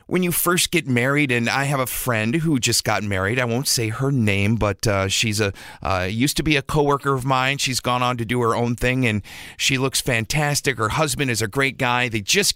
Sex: male